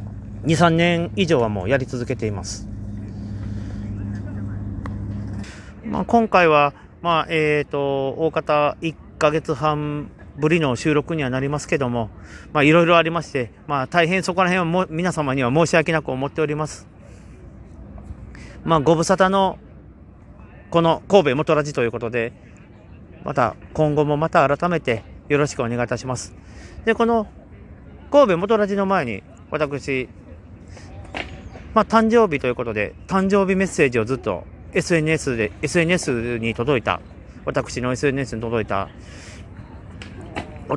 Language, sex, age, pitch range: Japanese, male, 40-59, 100-160 Hz